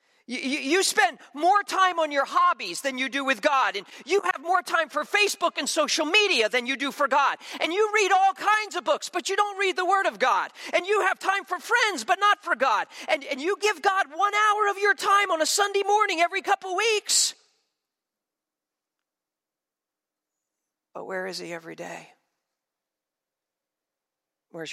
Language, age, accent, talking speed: English, 40-59, American, 185 wpm